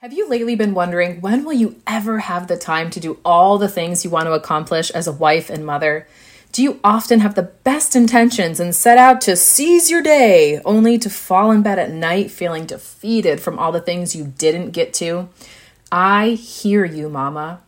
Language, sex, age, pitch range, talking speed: English, female, 30-49, 170-225 Hz, 205 wpm